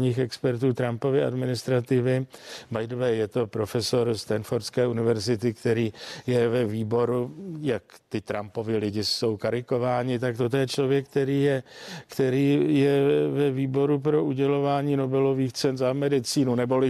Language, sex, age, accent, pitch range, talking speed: Czech, male, 50-69, native, 125-160 Hz, 140 wpm